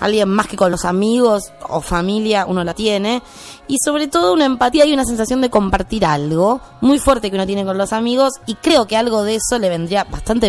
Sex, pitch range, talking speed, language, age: female, 200-255 Hz, 225 wpm, Spanish, 20-39